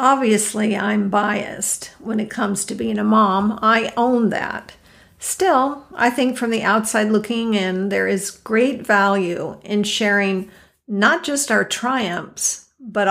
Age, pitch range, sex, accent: 50-69, 190-225 Hz, female, American